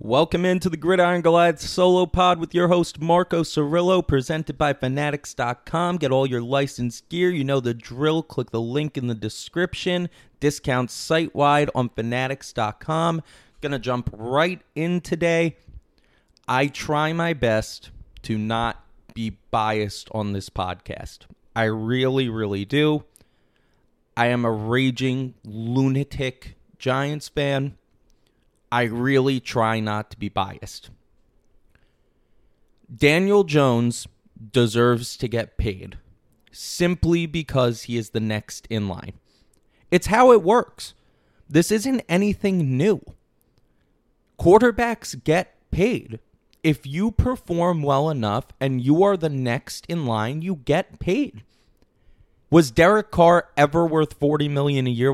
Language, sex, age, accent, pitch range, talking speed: English, male, 30-49, American, 115-165 Hz, 130 wpm